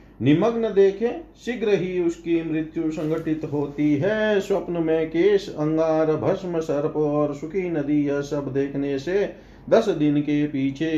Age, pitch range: 40-59, 145-195 Hz